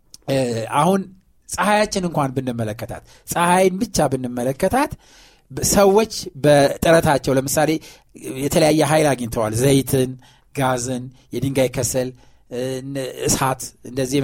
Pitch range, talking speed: 130-185 Hz, 80 wpm